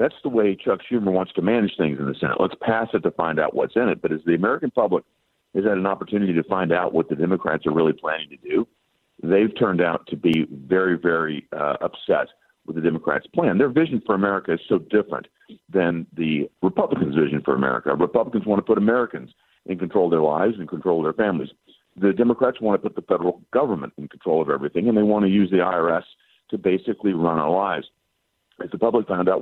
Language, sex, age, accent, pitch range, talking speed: English, male, 50-69, American, 80-105 Hz, 225 wpm